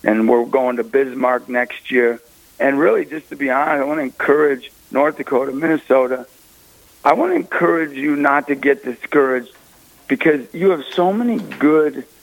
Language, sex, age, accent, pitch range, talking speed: English, male, 60-79, American, 120-145 Hz, 170 wpm